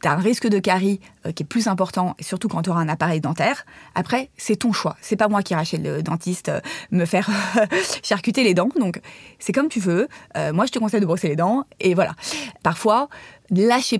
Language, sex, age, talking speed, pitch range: French, female, 20-39, 215 wpm, 175-225 Hz